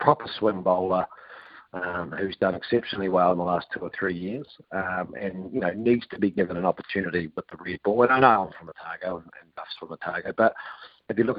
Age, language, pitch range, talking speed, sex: 40-59, English, 105-130 Hz, 225 wpm, male